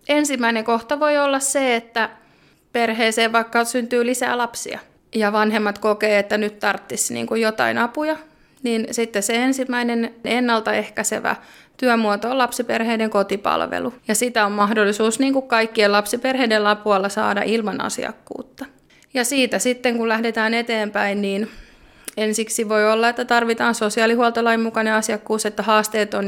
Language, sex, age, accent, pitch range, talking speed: Finnish, female, 30-49, native, 210-245 Hz, 135 wpm